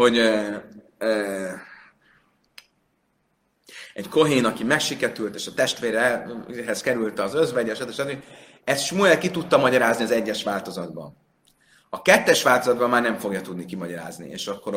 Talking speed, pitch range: 135 wpm, 115-150 Hz